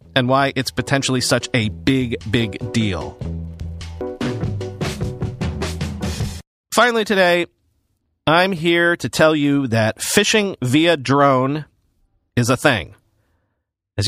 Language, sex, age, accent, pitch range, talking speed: English, male, 40-59, American, 115-170 Hz, 100 wpm